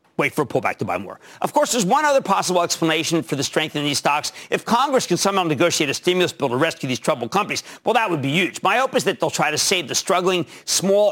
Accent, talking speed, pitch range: American, 265 wpm, 155-225 Hz